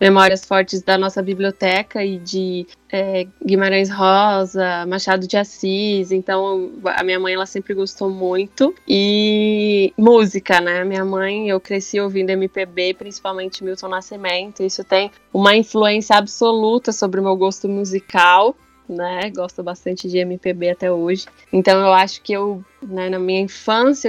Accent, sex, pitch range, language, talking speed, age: Brazilian, female, 190-210 Hz, Portuguese, 145 wpm, 10-29